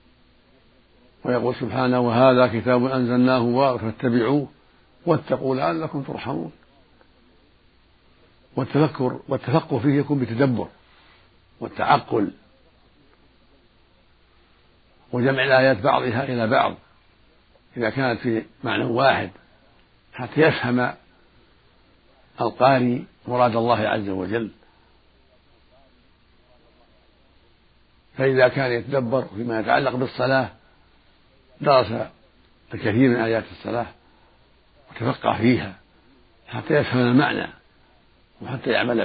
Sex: male